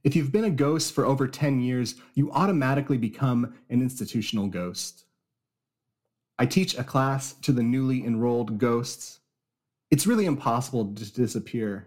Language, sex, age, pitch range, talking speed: English, male, 30-49, 105-140 Hz, 145 wpm